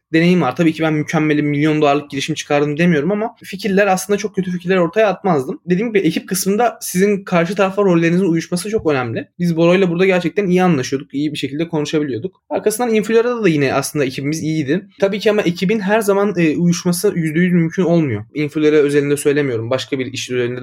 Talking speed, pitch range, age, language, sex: 185 wpm, 145-185 Hz, 20-39, Turkish, male